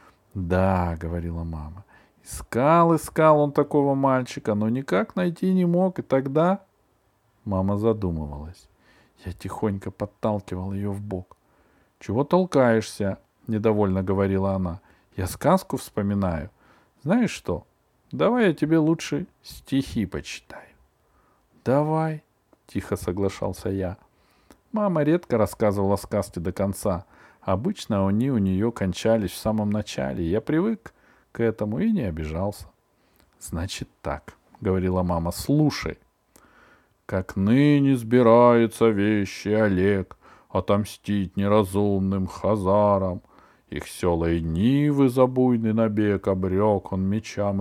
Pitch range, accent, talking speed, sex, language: 95-130 Hz, native, 115 wpm, male, Russian